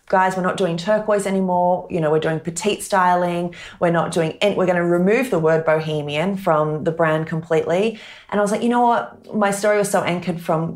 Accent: Australian